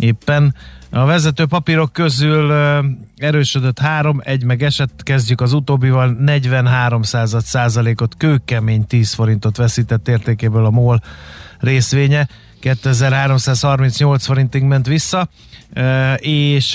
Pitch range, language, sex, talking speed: 115-135 Hz, Hungarian, male, 110 wpm